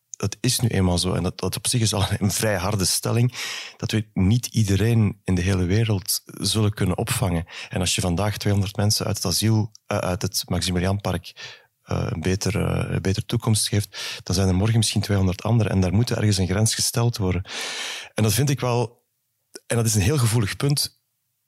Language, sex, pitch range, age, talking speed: Dutch, male, 95-120 Hz, 30-49, 210 wpm